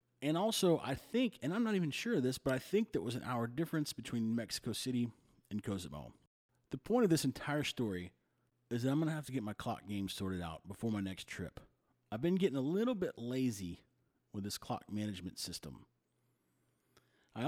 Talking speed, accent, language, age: 205 wpm, American, English, 30-49